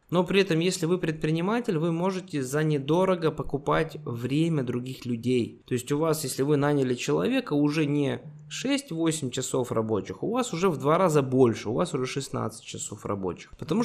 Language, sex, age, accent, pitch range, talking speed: Russian, male, 20-39, native, 130-160 Hz, 180 wpm